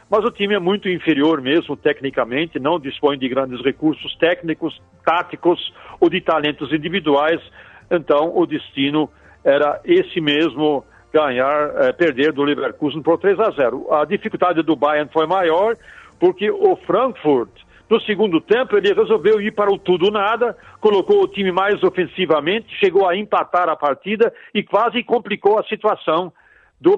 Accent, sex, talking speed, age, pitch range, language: Brazilian, male, 150 wpm, 60-79, 155-235 Hz, Portuguese